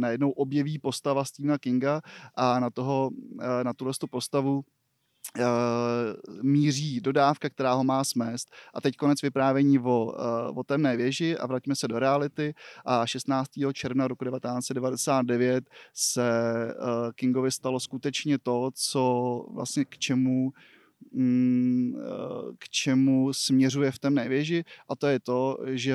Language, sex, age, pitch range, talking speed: Czech, male, 20-39, 125-145 Hz, 130 wpm